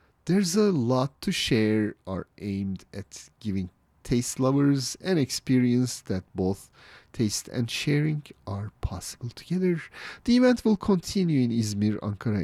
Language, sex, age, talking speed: English, male, 40-59, 135 wpm